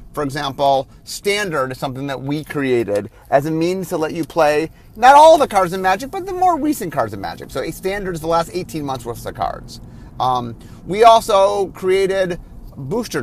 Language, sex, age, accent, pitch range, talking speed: English, male, 30-49, American, 135-185 Hz, 200 wpm